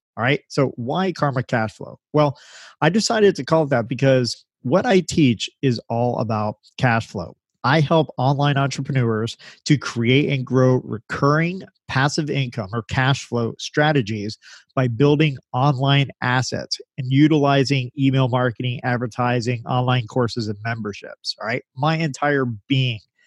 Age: 40-59